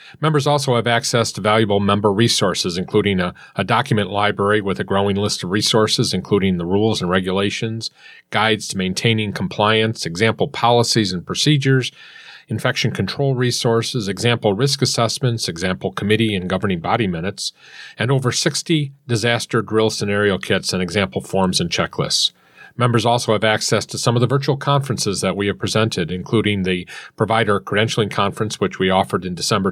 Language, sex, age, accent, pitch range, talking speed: English, male, 40-59, American, 100-125 Hz, 160 wpm